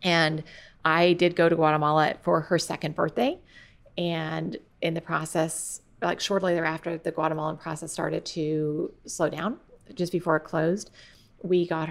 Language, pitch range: English, 155-180 Hz